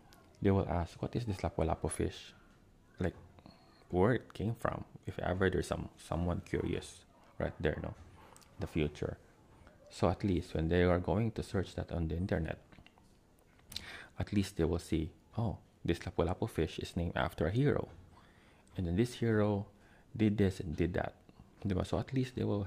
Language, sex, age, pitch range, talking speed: Filipino, male, 20-39, 85-105 Hz, 170 wpm